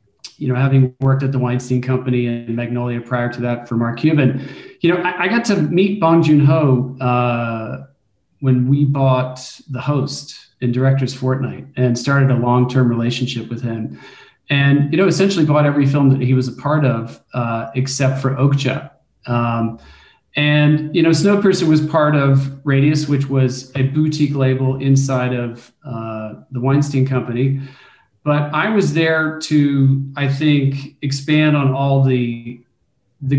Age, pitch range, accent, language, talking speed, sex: 40-59, 125-145 Hz, American, English, 165 wpm, male